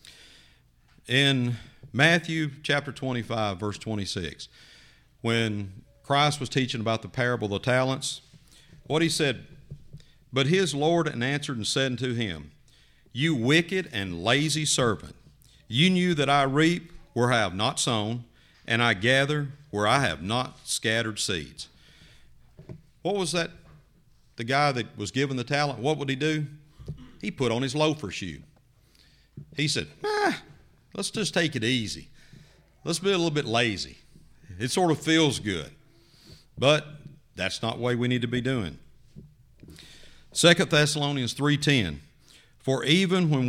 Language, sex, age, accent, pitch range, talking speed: English, male, 50-69, American, 110-150 Hz, 145 wpm